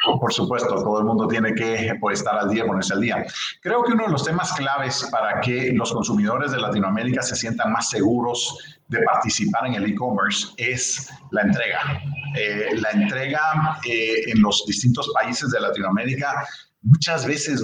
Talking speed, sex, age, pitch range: 170 wpm, male, 40-59, 105-140 Hz